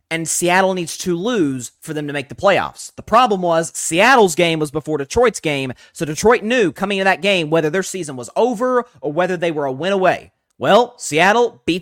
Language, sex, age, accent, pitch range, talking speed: English, male, 30-49, American, 130-175 Hz, 215 wpm